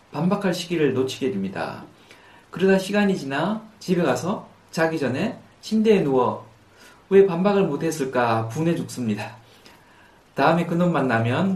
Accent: native